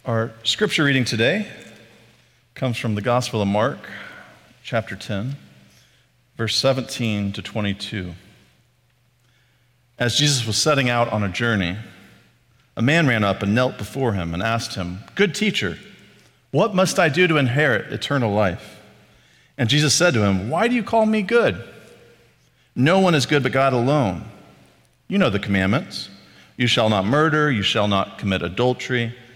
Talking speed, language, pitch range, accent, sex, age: 155 wpm, English, 105-135 Hz, American, male, 40-59